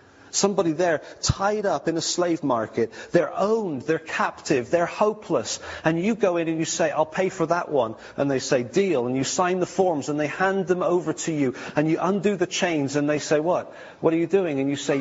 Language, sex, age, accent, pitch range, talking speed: English, male, 40-59, British, 125-170 Hz, 230 wpm